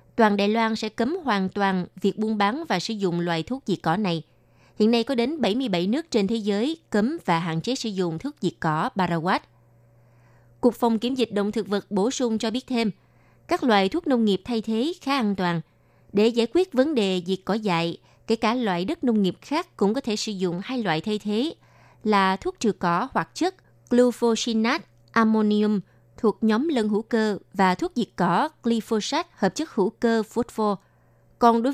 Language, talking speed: Vietnamese, 205 wpm